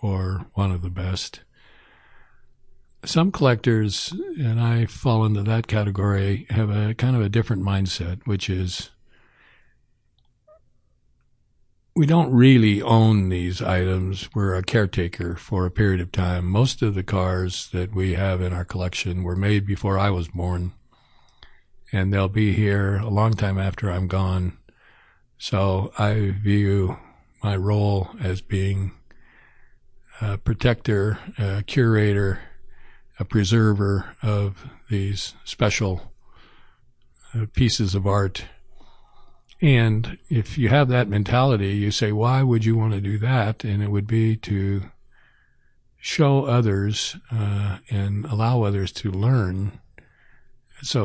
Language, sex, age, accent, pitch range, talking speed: English, male, 60-79, American, 95-115 Hz, 130 wpm